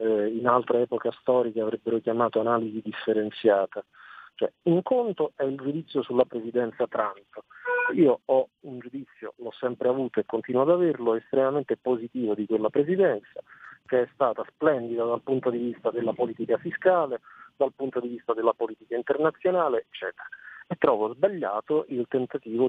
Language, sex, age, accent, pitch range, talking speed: Italian, male, 40-59, native, 115-155 Hz, 150 wpm